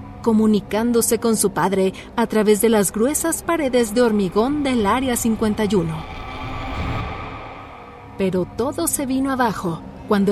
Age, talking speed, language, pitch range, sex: 40-59, 120 wpm, Spanish, 190-245 Hz, female